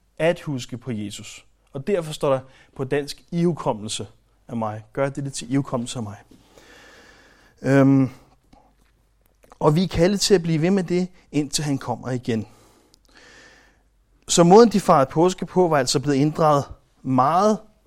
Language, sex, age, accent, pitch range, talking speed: Danish, male, 30-49, native, 125-160 Hz, 150 wpm